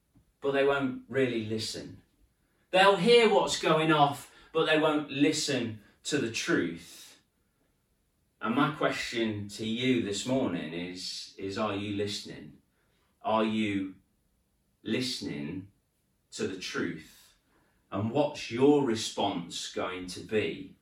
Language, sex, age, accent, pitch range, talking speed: English, male, 30-49, British, 95-130 Hz, 120 wpm